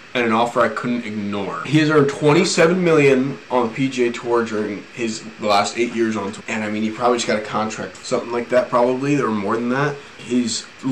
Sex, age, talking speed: male, 20-39, 225 wpm